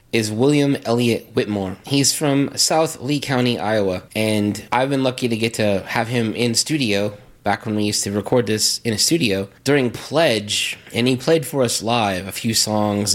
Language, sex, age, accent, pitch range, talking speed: English, male, 20-39, American, 105-130 Hz, 190 wpm